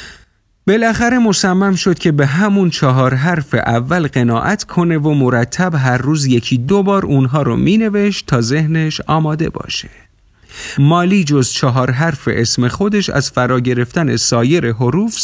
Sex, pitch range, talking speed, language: male, 120-175 Hz, 140 wpm, Persian